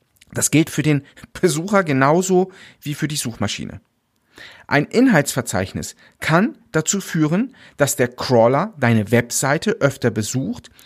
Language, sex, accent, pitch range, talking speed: German, male, German, 130-190 Hz, 120 wpm